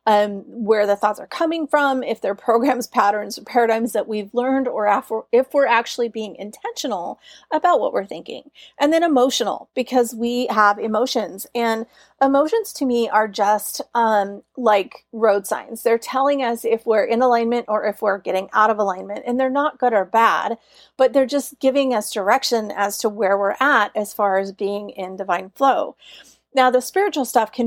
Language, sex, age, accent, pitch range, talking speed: English, female, 30-49, American, 210-265 Hz, 190 wpm